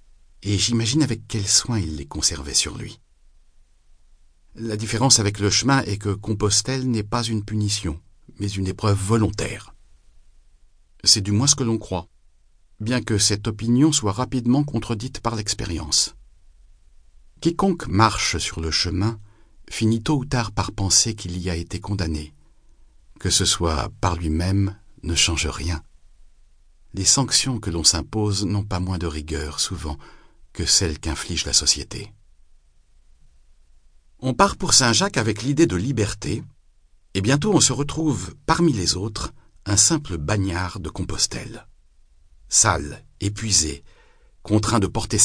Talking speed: 145 wpm